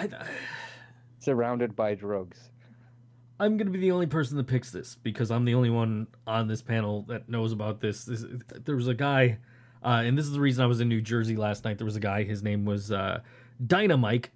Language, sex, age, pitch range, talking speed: English, male, 30-49, 110-125 Hz, 215 wpm